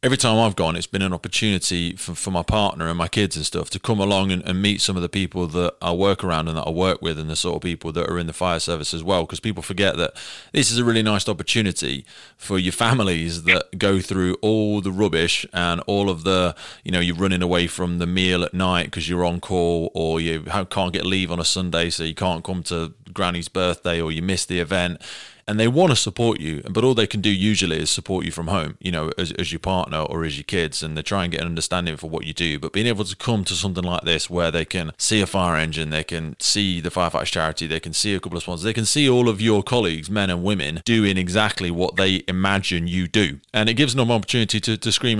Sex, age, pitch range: male, 30-49, 85-105 Hz